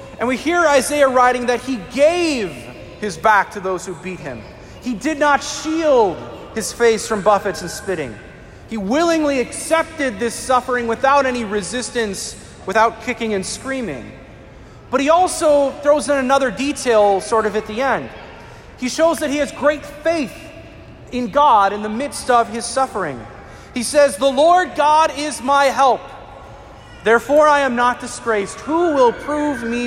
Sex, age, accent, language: male, 40-59, American, English